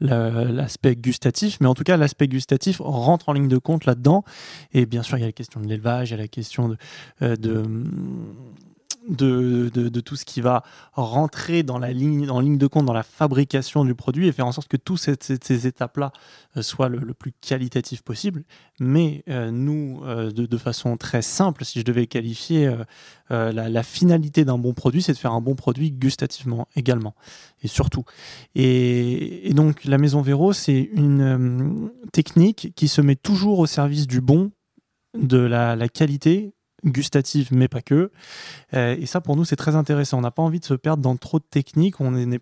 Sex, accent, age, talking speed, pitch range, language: male, French, 20-39, 200 wpm, 125-155 Hz, French